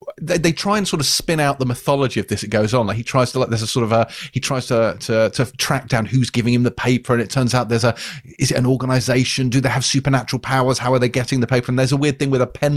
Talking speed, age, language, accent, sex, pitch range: 310 wpm, 30-49, English, British, male, 120-160 Hz